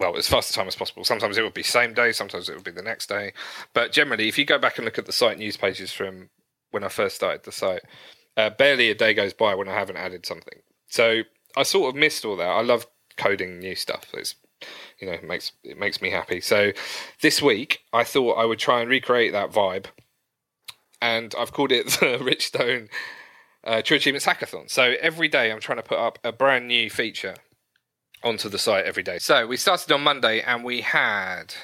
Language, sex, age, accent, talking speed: English, male, 30-49, British, 225 wpm